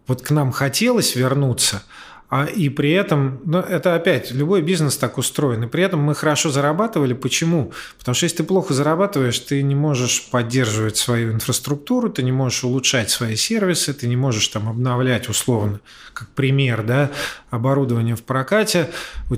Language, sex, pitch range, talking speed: Russian, male, 125-150 Hz, 165 wpm